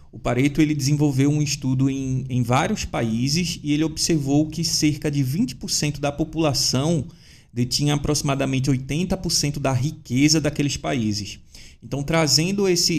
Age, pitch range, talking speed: 20-39, 130-165 Hz, 130 wpm